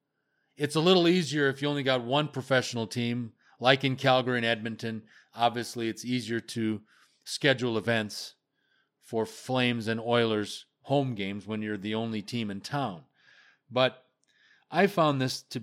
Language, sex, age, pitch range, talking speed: English, male, 40-59, 110-135 Hz, 155 wpm